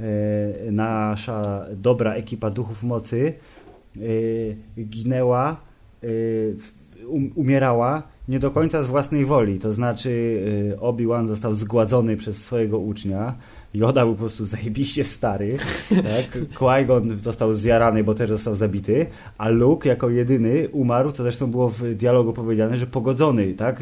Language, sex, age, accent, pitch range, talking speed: Polish, male, 20-39, native, 110-130 Hz, 125 wpm